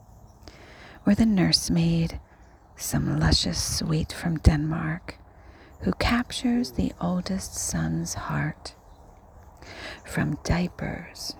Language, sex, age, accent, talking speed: English, female, 40-59, American, 85 wpm